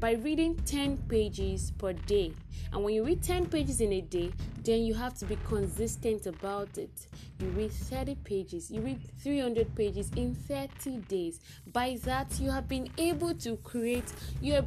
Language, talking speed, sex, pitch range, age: English, 170 wpm, female, 185-280 Hz, 10-29